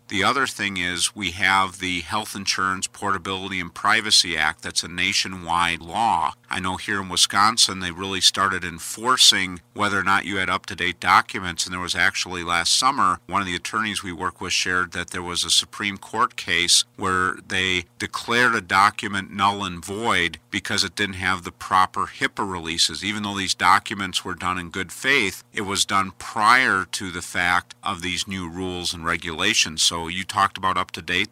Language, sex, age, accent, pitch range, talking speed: English, male, 50-69, American, 90-100 Hz, 190 wpm